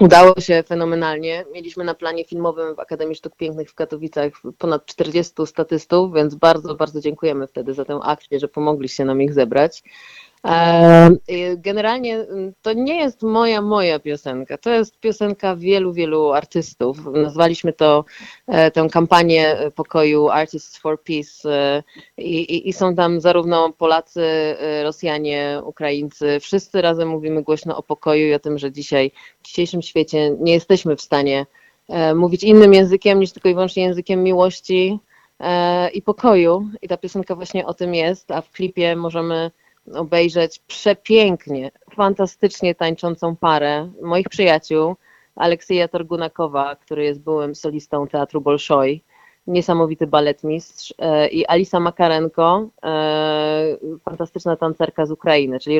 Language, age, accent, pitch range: Polish, 30-49, native, 155-180 Hz